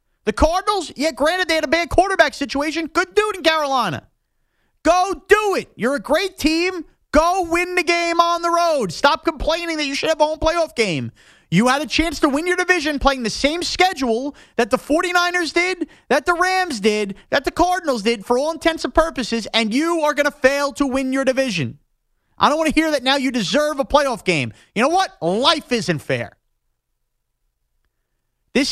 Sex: male